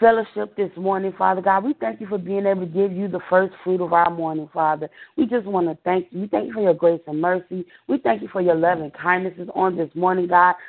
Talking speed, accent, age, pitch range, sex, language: 265 wpm, American, 30-49, 170-210 Hz, female, English